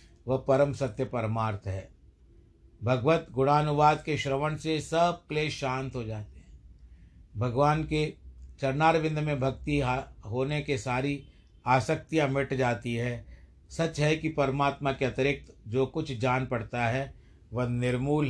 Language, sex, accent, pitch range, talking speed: Hindi, male, native, 115-150 Hz, 135 wpm